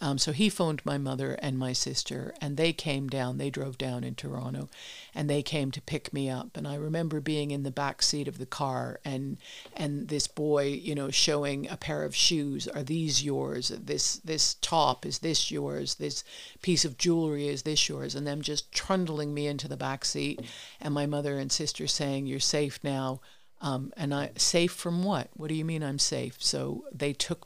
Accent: American